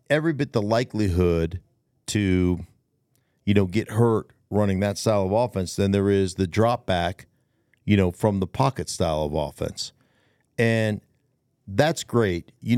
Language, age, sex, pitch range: English, 50-69, male, 105-130 Hz